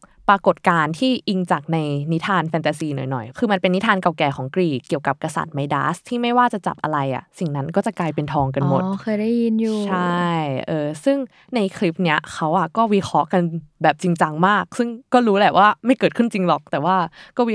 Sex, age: female, 20-39